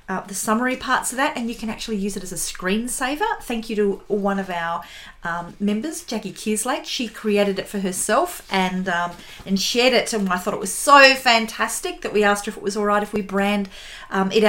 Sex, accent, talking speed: female, Australian, 230 wpm